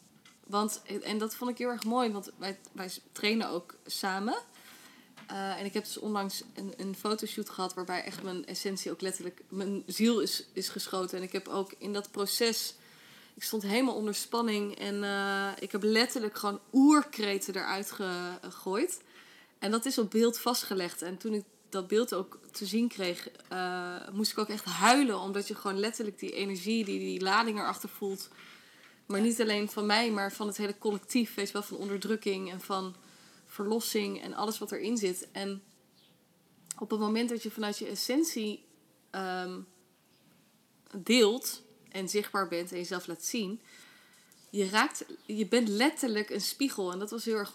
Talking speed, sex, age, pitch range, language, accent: 175 wpm, female, 20-39, 195-225 Hz, Dutch, Dutch